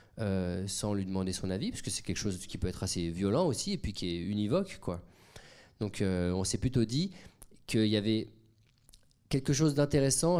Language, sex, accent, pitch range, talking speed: French, male, French, 105-135 Hz, 200 wpm